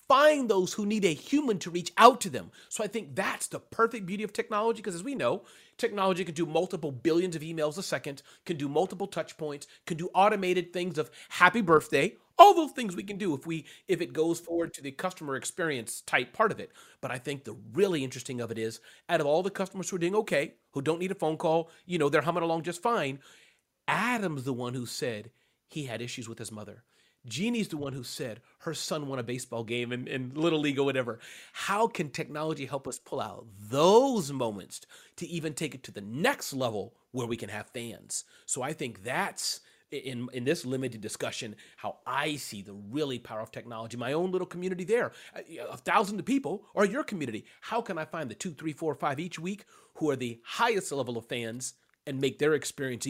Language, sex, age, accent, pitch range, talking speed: English, male, 30-49, American, 130-185 Hz, 220 wpm